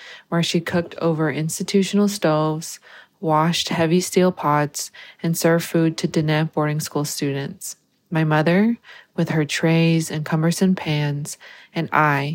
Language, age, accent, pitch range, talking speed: English, 20-39, American, 155-175 Hz, 135 wpm